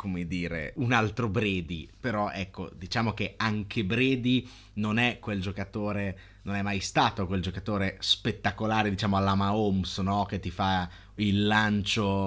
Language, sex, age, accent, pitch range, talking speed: Italian, male, 30-49, native, 95-110 Hz, 150 wpm